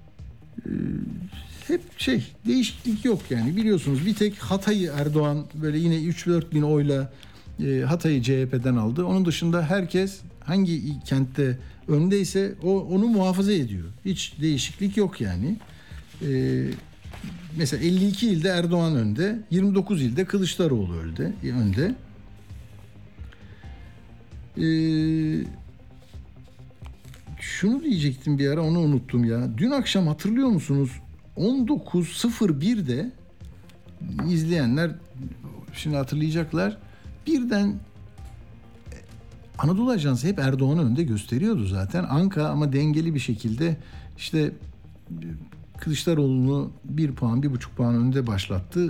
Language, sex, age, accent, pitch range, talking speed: Turkish, male, 60-79, native, 120-185 Hz, 95 wpm